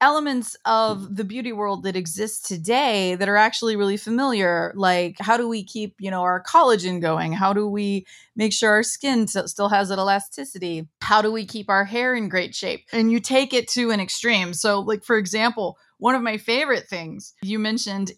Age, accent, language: 20-39, American, English